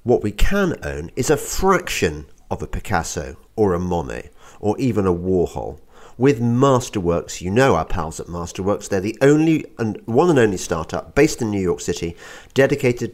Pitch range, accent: 90-135 Hz, British